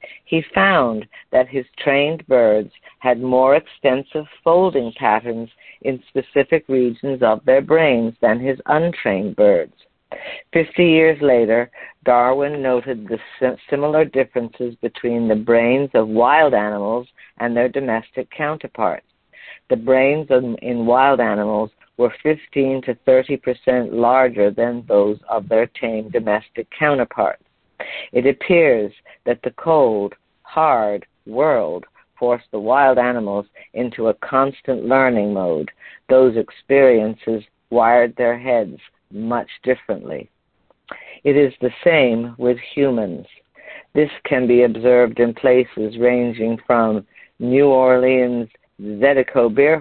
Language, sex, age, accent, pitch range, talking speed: English, female, 60-79, American, 115-135 Hz, 120 wpm